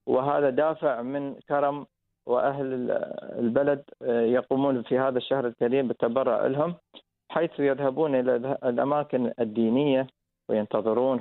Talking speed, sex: 100 wpm, male